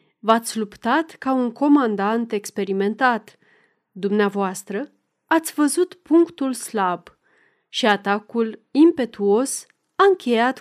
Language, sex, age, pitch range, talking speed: Romanian, female, 30-49, 210-285 Hz, 90 wpm